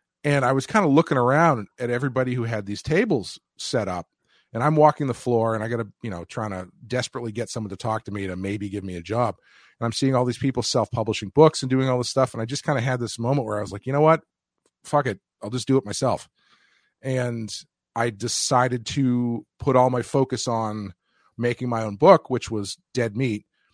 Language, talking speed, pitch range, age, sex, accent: English, 240 wpm, 110-135 Hz, 30-49, male, American